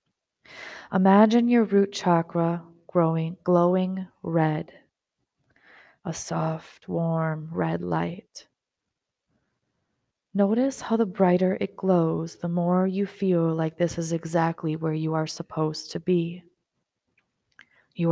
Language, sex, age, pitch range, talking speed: English, female, 30-49, 160-195 Hz, 110 wpm